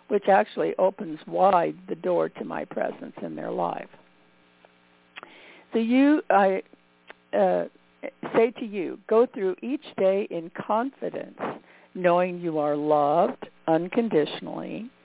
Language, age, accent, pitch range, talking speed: English, 60-79, American, 160-230 Hz, 120 wpm